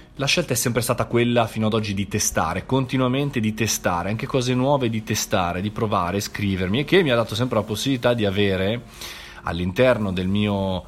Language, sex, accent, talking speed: Italian, male, native, 195 wpm